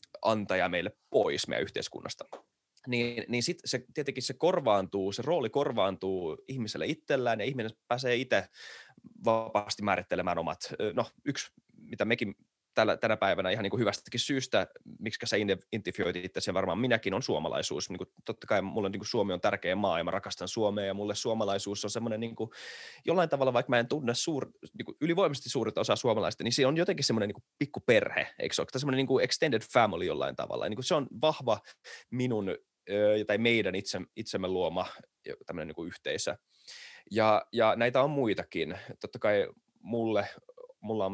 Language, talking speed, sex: Finnish, 175 wpm, male